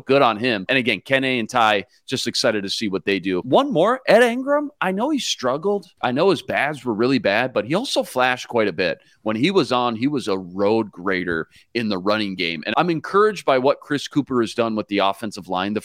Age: 40-59